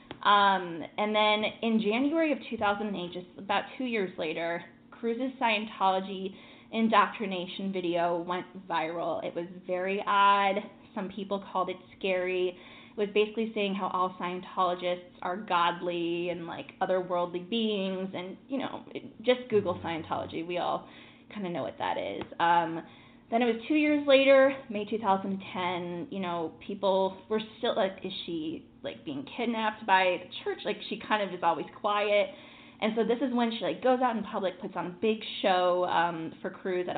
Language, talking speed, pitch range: English, 165 wpm, 180-225 Hz